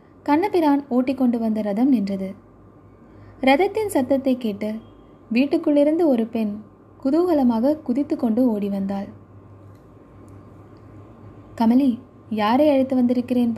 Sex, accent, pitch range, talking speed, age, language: female, native, 215-275 Hz, 95 wpm, 20-39, Tamil